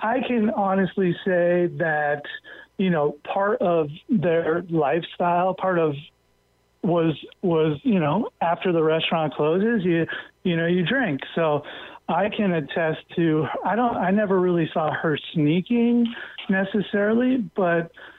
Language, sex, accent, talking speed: English, male, American, 135 wpm